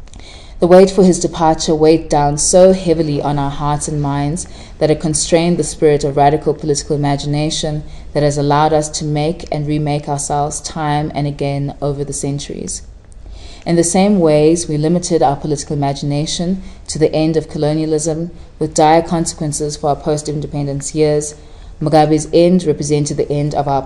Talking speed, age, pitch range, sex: 165 wpm, 20-39, 145-160 Hz, female